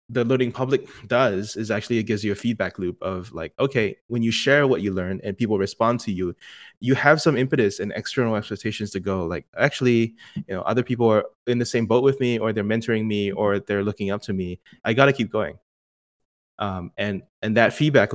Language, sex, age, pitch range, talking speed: English, male, 20-39, 95-115 Hz, 225 wpm